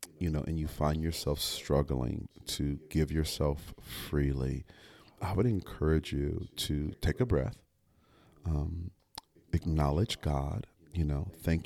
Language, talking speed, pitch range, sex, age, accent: English, 130 wpm, 75-95 Hz, male, 40-59, American